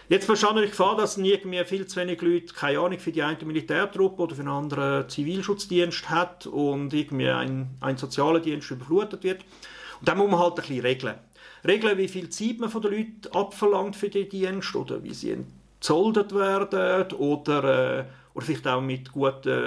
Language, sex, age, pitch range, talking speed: German, male, 50-69, 150-195 Hz, 185 wpm